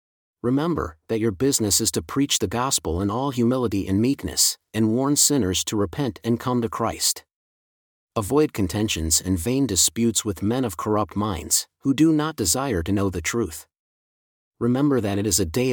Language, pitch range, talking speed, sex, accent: English, 100-130 Hz, 180 wpm, male, American